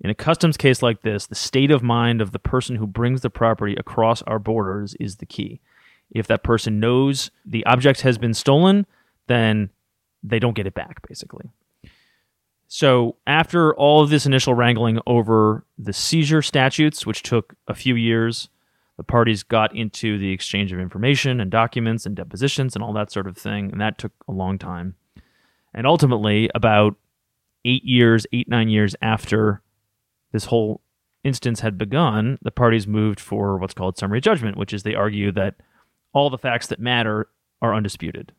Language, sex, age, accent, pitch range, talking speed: English, male, 30-49, American, 105-125 Hz, 175 wpm